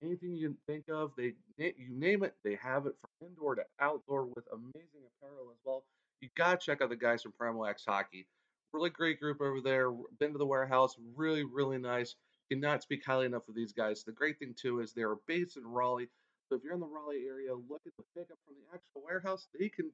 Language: English